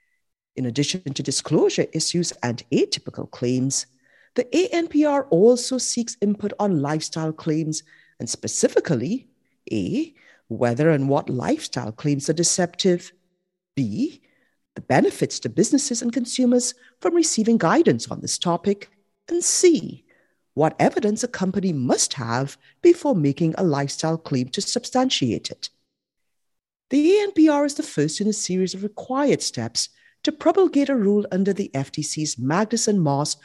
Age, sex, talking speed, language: 50-69, female, 135 wpm, English